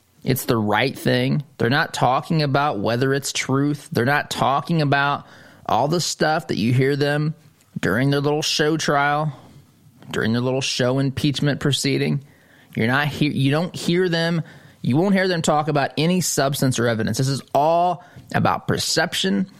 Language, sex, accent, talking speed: English, male, American, 165 wpm